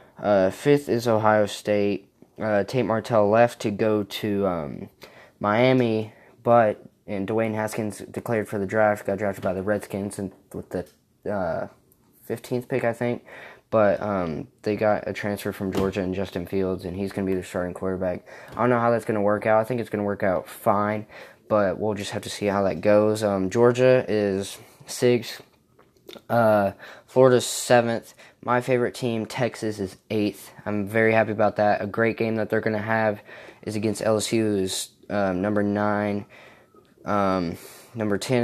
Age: 10-29